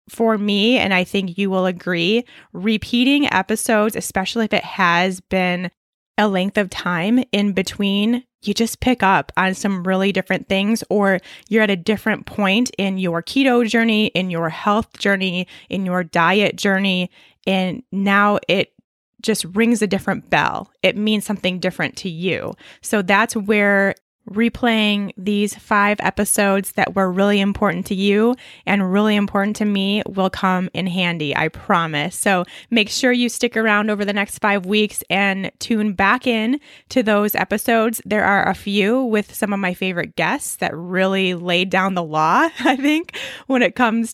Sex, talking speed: female, 170 wpm